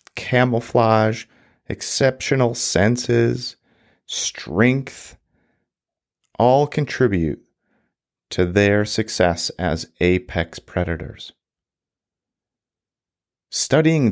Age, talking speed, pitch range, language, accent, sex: 40-59, 55 wpm, 90-125 Hz, English, American, male